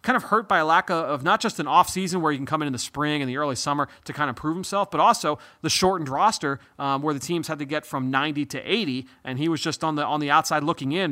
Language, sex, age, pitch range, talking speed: English, male, 30-49, 140-175 Hz, 300 wpm